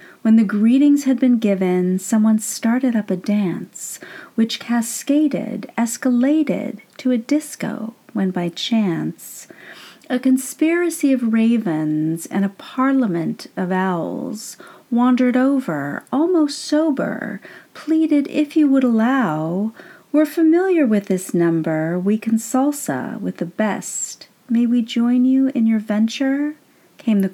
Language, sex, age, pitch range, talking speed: English, female, 40-59, 195-265 Hz, 125 wpm